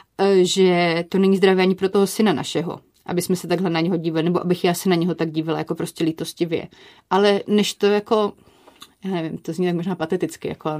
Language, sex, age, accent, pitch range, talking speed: Czech, female, 30-49, native, 185-220 Hz, 215 wpm